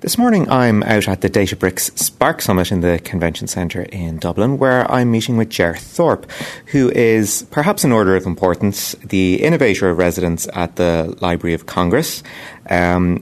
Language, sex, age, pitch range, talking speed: English, male, 30-49, 90-105 Hz, 175 wpm